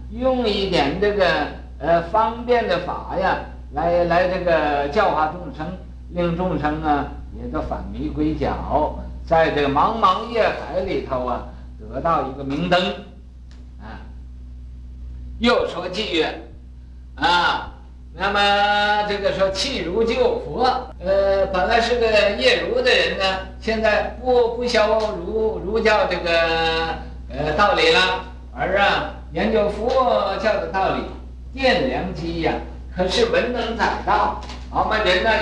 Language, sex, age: Chinese, male, 50-69